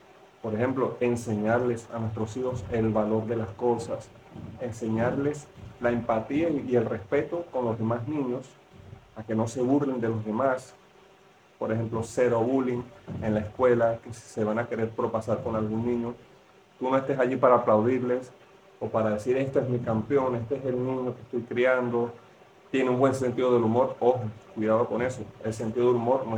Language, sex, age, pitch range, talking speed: English, male, 30-49, 115-135 Hz, 185 wpm